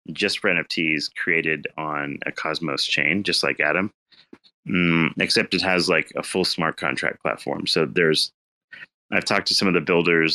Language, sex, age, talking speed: English, male, 30-49, 175 wpm